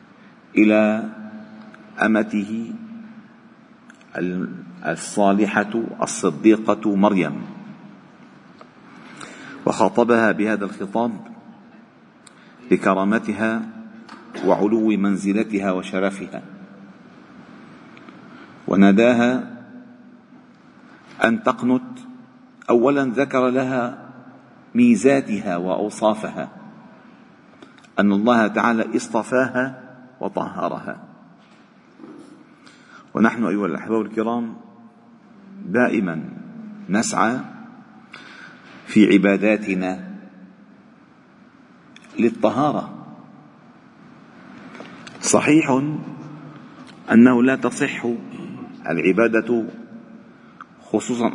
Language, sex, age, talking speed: Arabic, male, 50-69, 45 wpm